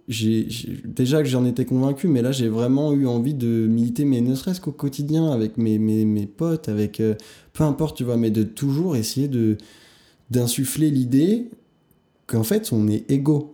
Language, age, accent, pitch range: French, 20-39, French, 110-135 Hz